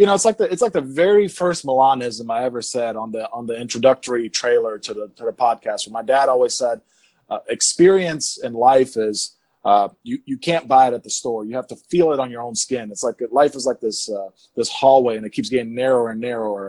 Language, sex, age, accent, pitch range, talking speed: English, male, 20-39, American, 115-145 Hz, 250 wpm